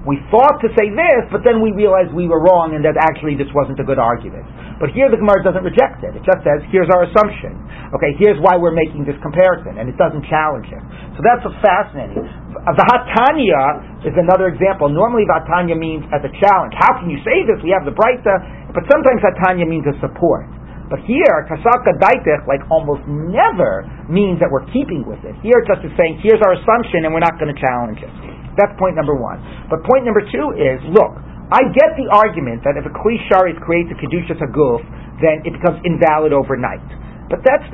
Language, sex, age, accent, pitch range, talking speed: English, male, 40-59, American, 160-230 Hz, 210 wpm